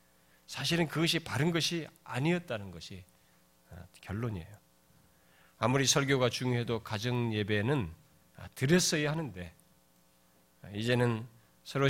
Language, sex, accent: Korean, male, native